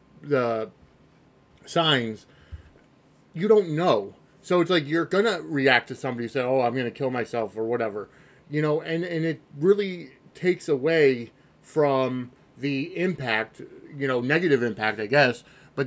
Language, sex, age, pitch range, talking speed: English, male, 30-49, 125-160 Hz, 150 wpm